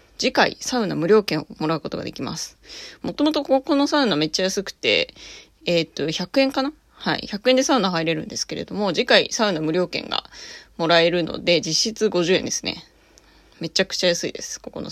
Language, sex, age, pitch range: Japanese, female, 20-39, 165-235 Hz